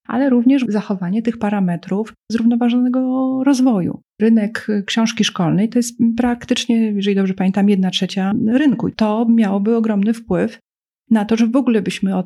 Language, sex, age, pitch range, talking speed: Polish, female, 40-59, 180-225 Hz, 150 wpm